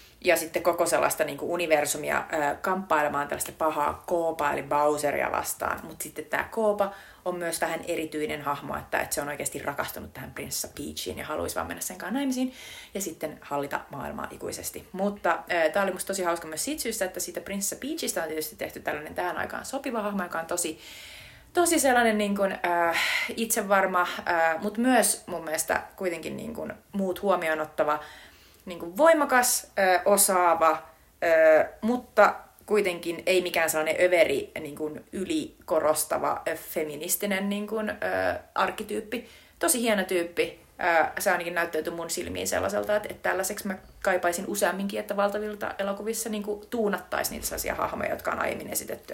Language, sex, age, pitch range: Finnish, female, 30-49, 165-215 Hz